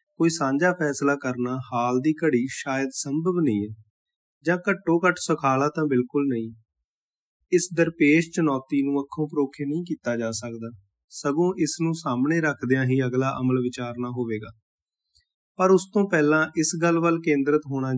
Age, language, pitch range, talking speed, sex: 30-49, Punjabi, 125-160 Hz, 155 wpm, male